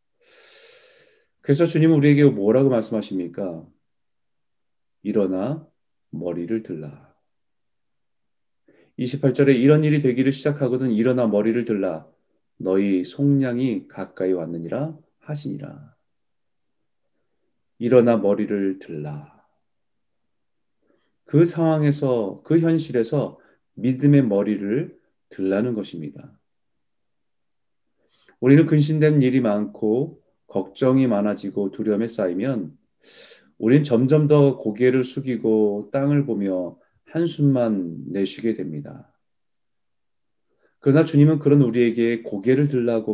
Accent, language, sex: native, Korean, male